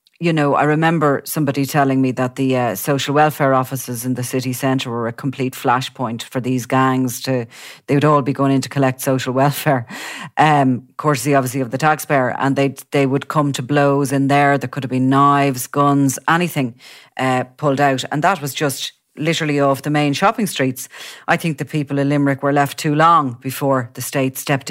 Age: 40-59